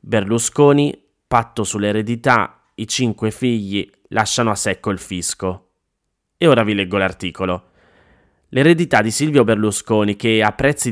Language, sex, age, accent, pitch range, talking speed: Italian, male, 20-39, native, 100-125 Hz, 125 wpm